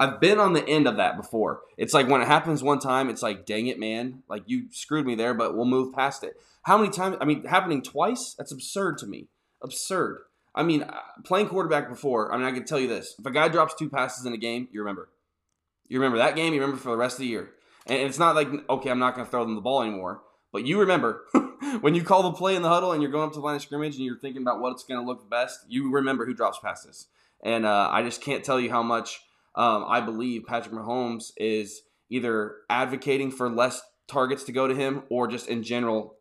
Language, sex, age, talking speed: English, male, 20-39, 255 wpm